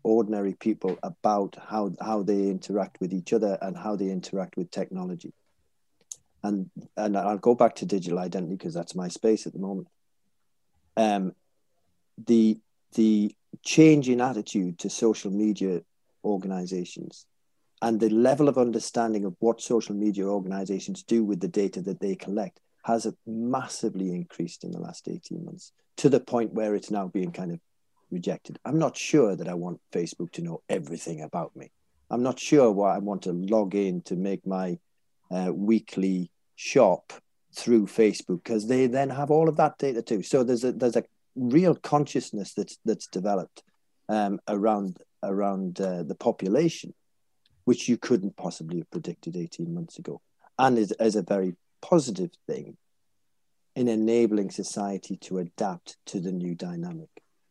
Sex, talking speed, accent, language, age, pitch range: male, 160 wpm, British, English, 40-59, 95-120 Hz